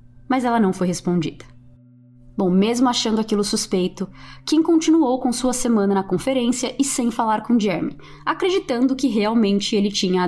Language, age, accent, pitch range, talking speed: Portuguese, 20-39, Brazilian, 175-240 Hz, 165 wpm